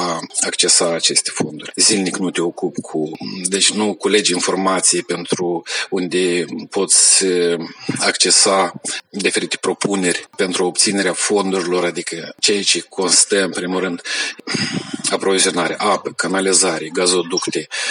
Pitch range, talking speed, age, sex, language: 95-125 Hz, 110 wpm, 40-59, male, Romanian